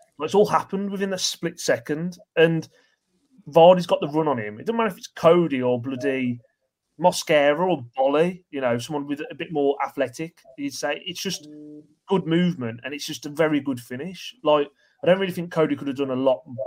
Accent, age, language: British, 30-49, English